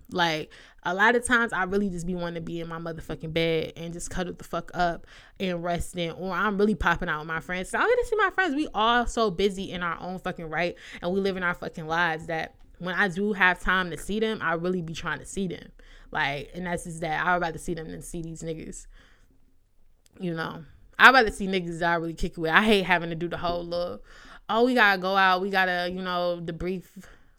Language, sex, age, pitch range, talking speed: English, female, 20-39, 160-195 Hz, 260 wpm